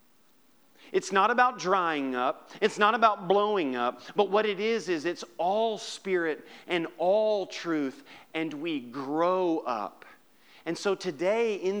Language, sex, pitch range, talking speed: English, male, 165-220 Hz, 145 wpm